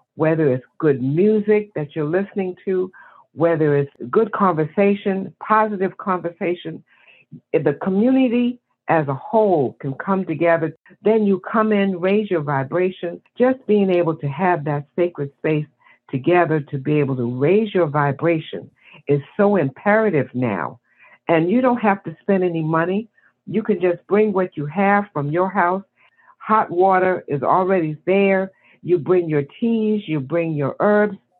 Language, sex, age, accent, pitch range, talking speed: English, female, 60-79, American, 155-200 Hz, 155 wpm